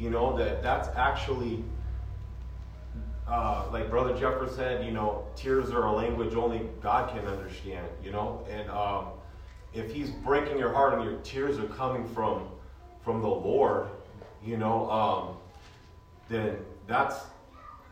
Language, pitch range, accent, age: English, 95-115 Hz, American, 30-49